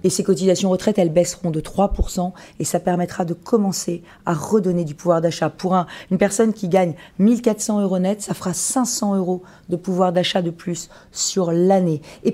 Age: 40-59